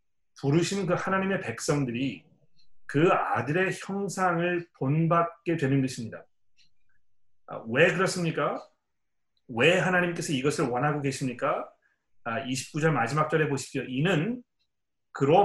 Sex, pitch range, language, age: male, 135-175 Hz, Korean, 40-59